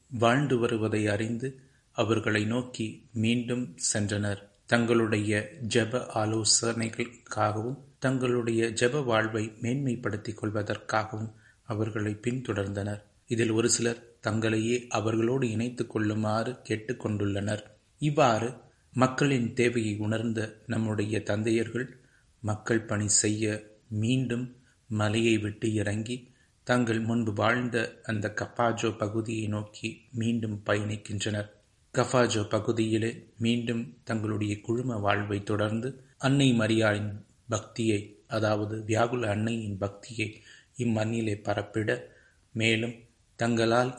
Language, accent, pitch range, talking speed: Tamil, native, 105-120 Hz, 85 wpm